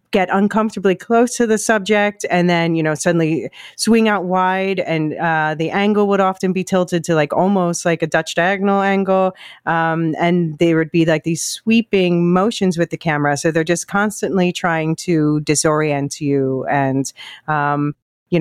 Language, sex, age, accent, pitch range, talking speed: English, female, 30-49, American, 150-185 Hz, 175 wpm